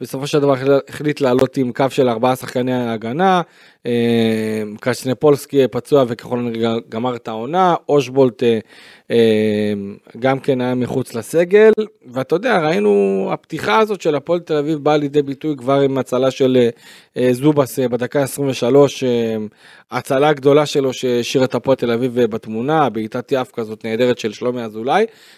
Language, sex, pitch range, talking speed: Hebrew, male, 125-170 Hz, 135 wpm